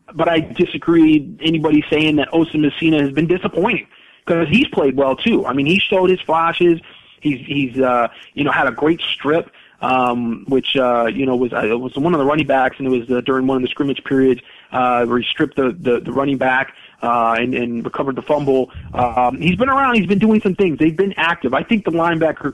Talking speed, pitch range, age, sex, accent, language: 230 wpm, 130-165 Hz, 30-49, male, American, English